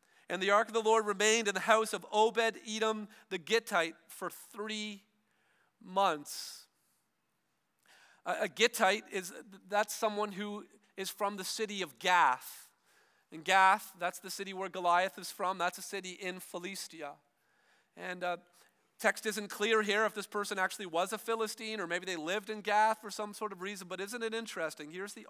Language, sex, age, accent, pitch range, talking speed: English, male, 40-59, American, 175-215 Hz, 170 wpm